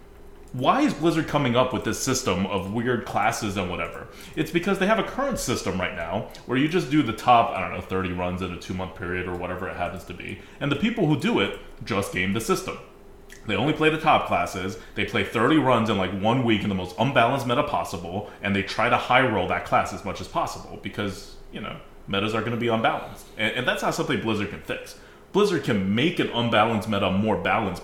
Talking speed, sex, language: 240 wpm, male, English